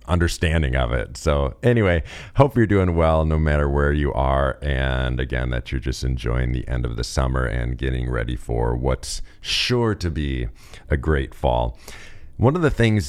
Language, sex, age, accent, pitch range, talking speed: English, male, 40-59, American, 70-85 Hz, 185 wpm